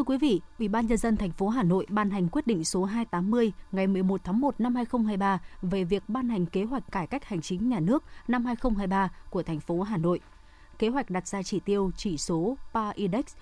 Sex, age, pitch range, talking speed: female, 20-39, 185-235 Hz, 230 wpm